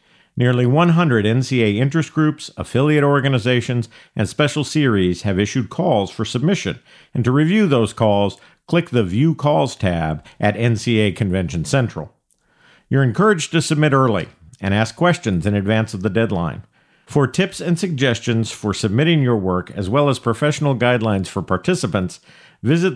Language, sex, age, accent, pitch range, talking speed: English, male, 50-69, American, 105-145 Hz, 150 wpm